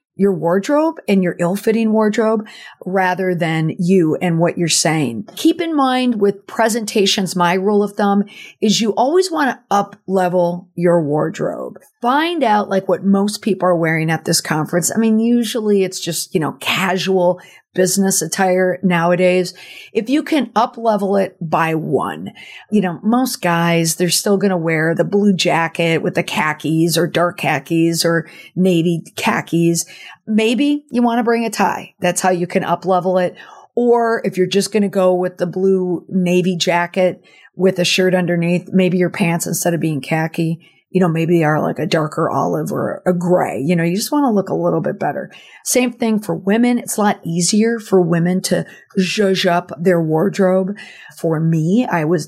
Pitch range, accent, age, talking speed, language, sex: 170-205 Hz, American, 50-69, 180 wpm, English, female